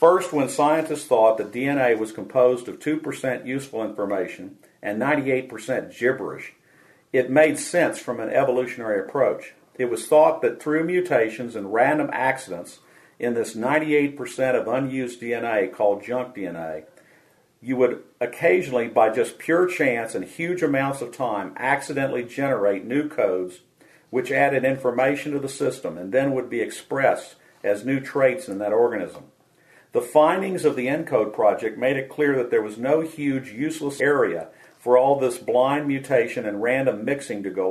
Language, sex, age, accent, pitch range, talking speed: English, male, 50-69, American, 120-150 Hz, 160 wpm